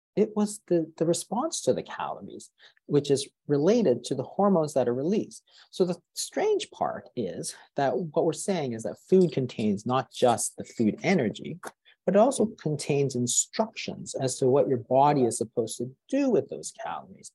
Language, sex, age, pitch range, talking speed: English, male, 40-59, 130-210 Hz, 175 wpm